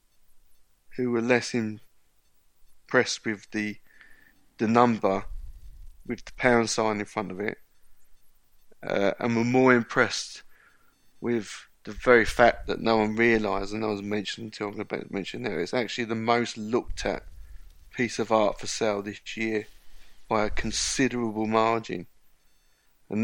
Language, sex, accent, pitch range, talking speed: English, male, British, 95-120 Hz, 140 wpm